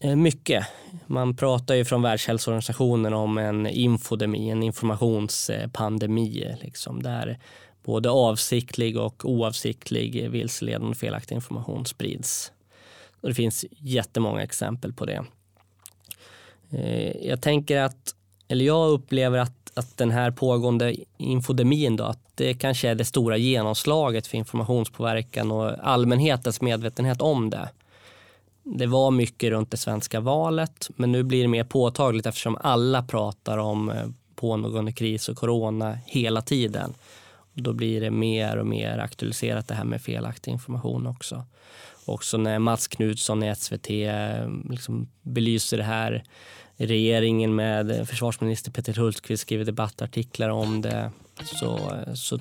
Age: 20-39